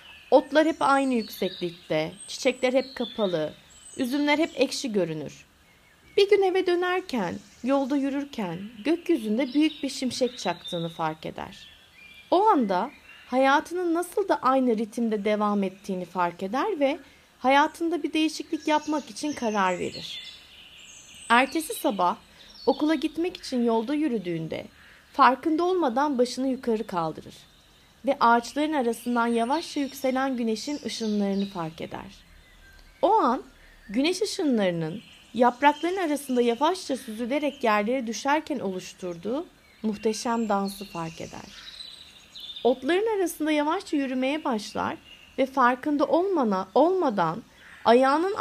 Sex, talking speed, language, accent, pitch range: female, 110 wpm, Turkish, native, 220-300 Hz